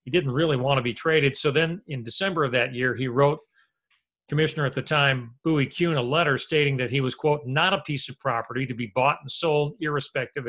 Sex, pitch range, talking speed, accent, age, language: male, 125-155 Hz, 230 wpm, American, 50-69, English